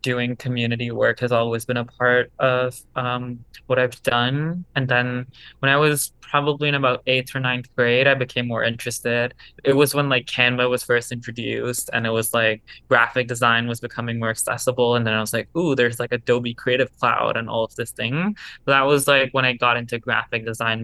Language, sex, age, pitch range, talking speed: English, male, 20-39, 120-130 Hz, 205 wpm